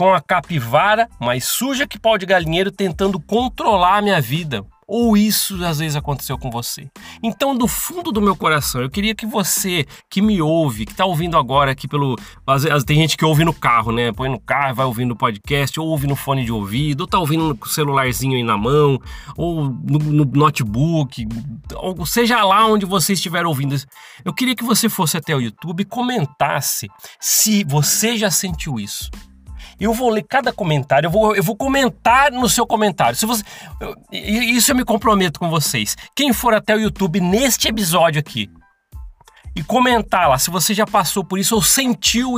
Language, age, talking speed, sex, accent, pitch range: Portuguese, 30-49, 185 wpm, male, Brazilian, 140-210 Hz